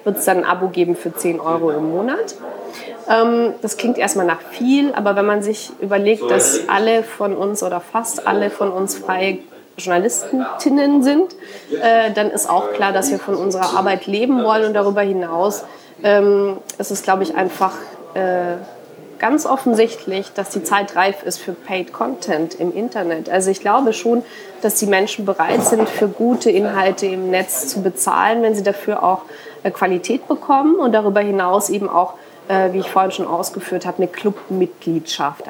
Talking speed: 170 wpm